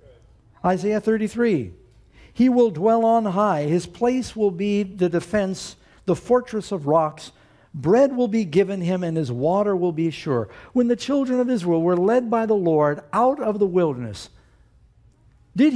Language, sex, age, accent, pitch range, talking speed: English, male, 60-79, American, 125-205 Hz, 165 wpm